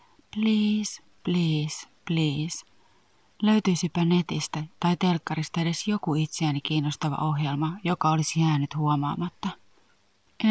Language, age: Finnish, 30-49